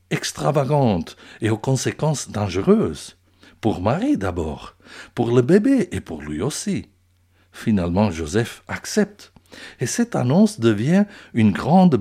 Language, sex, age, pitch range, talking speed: French, male, 60-79, 95-150 Hz, 120 wpm